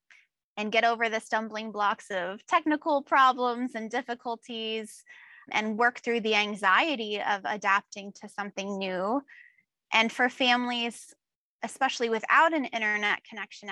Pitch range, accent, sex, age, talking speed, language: 205-245 Hz, American, female, 20-39, 125 wpm, English